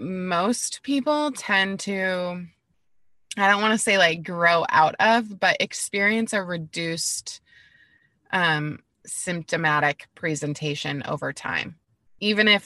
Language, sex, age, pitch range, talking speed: English, female, 20-39, 155-195 Hz, 115 wpm